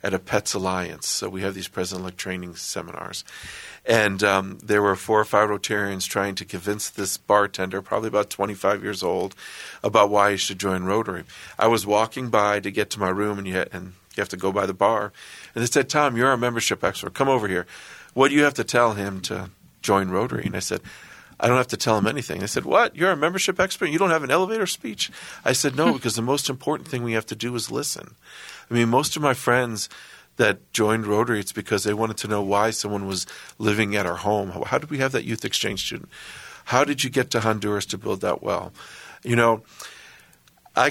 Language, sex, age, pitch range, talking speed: English, male, 50-69, 95-115 Hz, 225 wpm